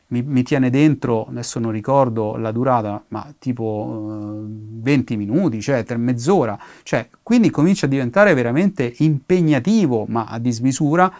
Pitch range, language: 120-165 Hz, Italian